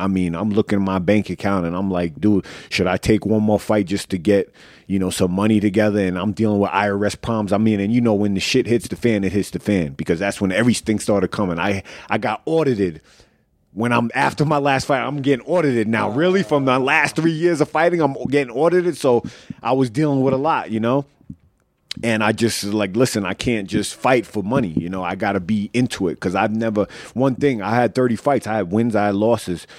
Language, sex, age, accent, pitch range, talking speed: English, male, 30-49, American, 95-120 Hz, 245 wpm